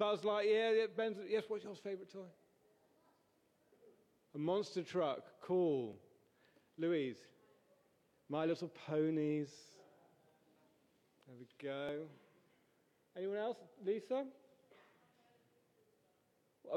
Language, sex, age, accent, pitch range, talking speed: English, male, 30-49, British, 150-215 Hz, 85 wpm